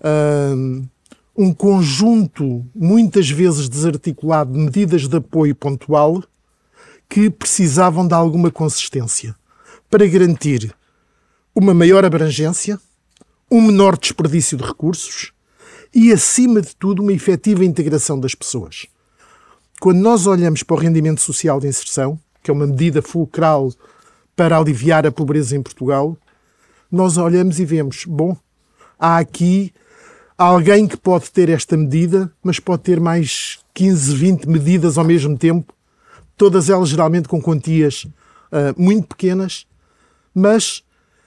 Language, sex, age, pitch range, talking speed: Portuguese, male, 50-69, 150-195 Hz, 125 wpm